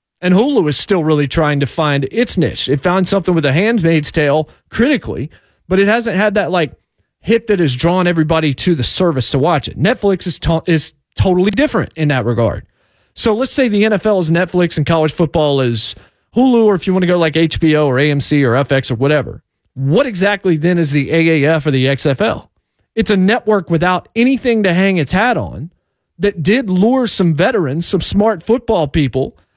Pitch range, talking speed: 150-205 Hz, 200 wpm